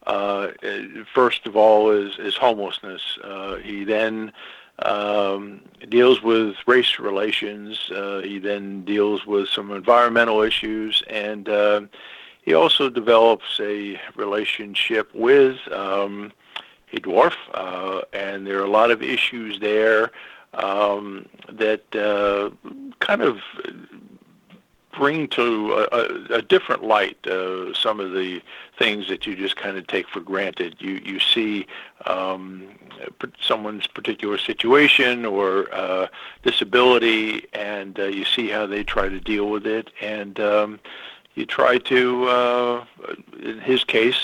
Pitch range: 100-115 Hz